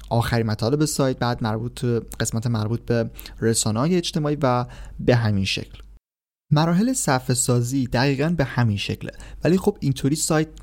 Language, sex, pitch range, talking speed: Persian, male, 115-145 Hz, 140 wpm